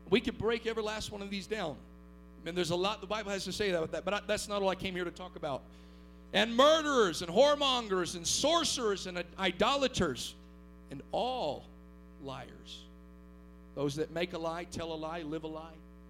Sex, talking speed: male, 200 wpm